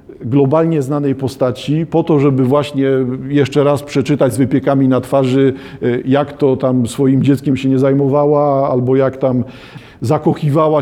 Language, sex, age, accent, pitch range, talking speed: Polish, male, 50-69, native, 130-165 Hz, 145 wpm